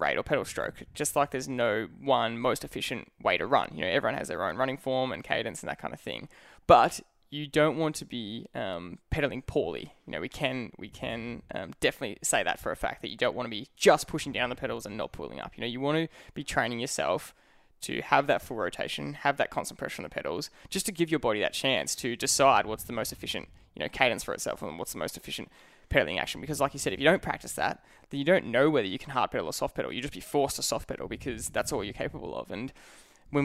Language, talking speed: English, 265 wpm